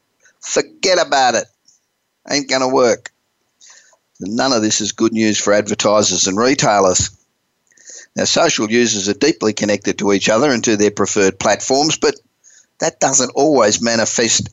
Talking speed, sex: 150 wpm, male